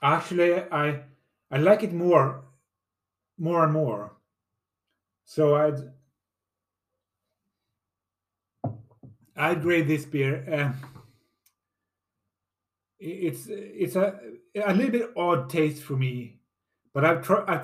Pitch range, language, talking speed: 115-160 Hz, English, 100 wpm